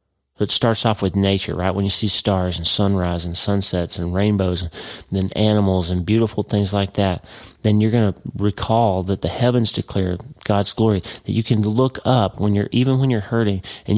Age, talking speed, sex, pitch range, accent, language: 40-59, 200 wpm, male, 95-110 Hz, American, English